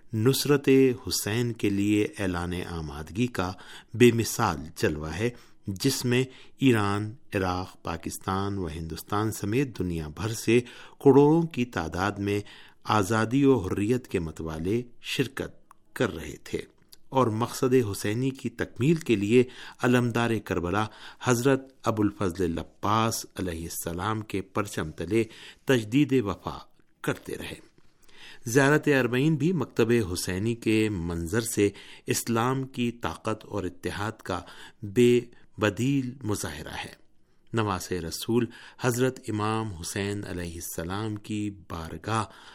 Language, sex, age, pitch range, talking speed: Urdu, male, 50-69, 95-125 Hz, 120 wpm